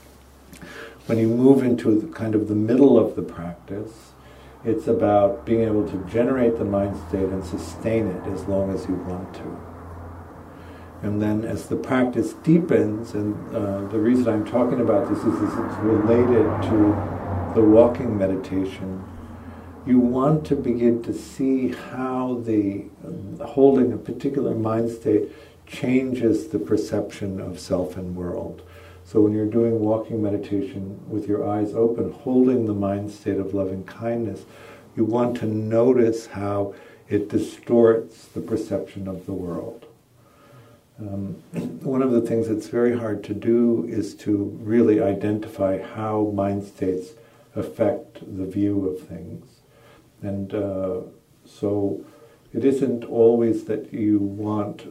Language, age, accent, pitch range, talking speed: English, 60-79, American, 95-115 Hz, 145 wpm